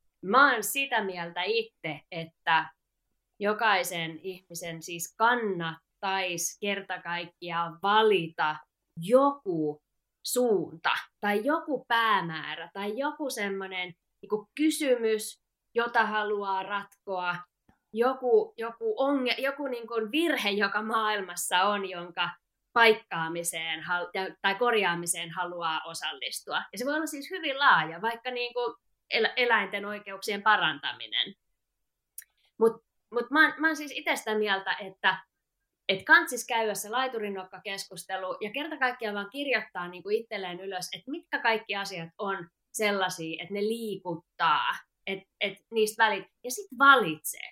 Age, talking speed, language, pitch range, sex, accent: 20-39, 110 wpm, Finnish, 180-250 Hz, female, native